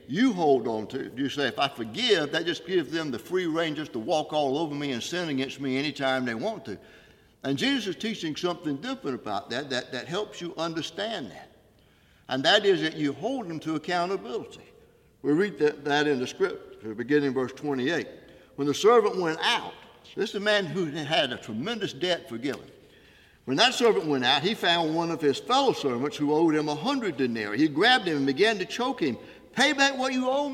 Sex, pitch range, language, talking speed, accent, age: male, 140-225 Hz, English, 215 wpm, American, 60-79